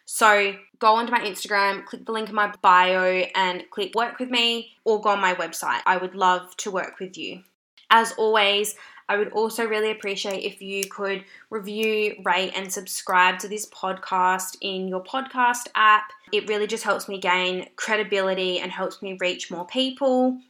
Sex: female